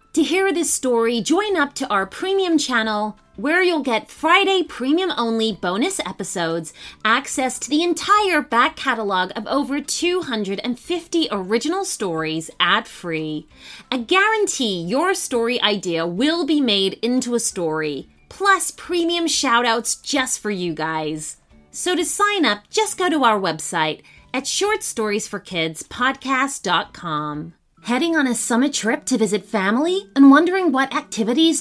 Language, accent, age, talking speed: English, American, 30-49, 135 wpm